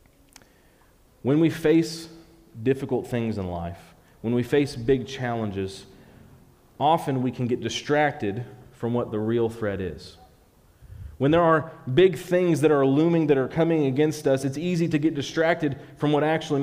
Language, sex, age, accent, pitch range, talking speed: English, male, 40-59, American, 120-160 Hz, 160 wpm